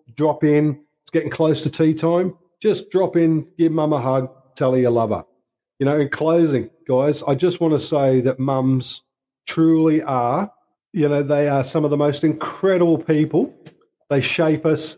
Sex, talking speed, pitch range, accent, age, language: male, 190 wpm, 130-150 Hz, Australian, 40-59, English